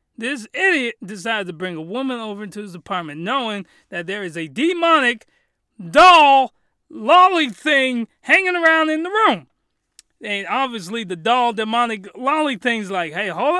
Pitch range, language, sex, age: 175-240 Hz, English, male, 30-49